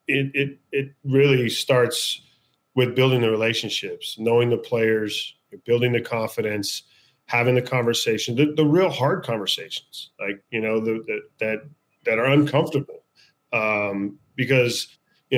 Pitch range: 110-135 Hz